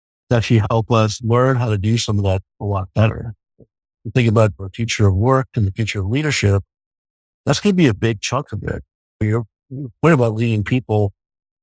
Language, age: English, 60-79